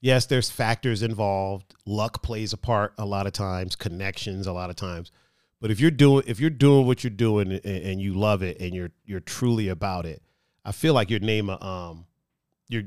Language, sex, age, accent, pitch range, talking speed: English, male, 40-59, American, 105-145 Hz, 205 wpm